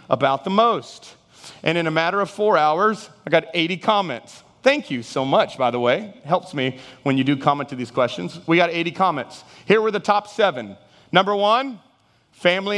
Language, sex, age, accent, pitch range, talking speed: English, male, 30-49, American, 160-230 Hz, 195 wpm